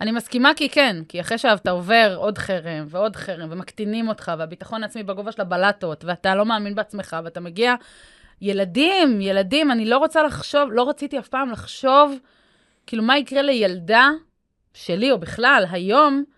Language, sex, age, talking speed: Hebrew, female, 20-39, 160 wpm